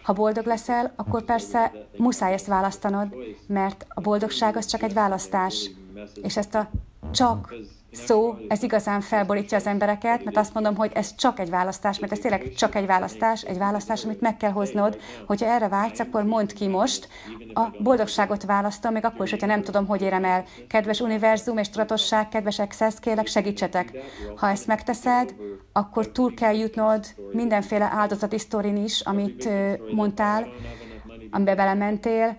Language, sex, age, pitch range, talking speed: English, female, 30-49, 200-225 Hz, 160 wpm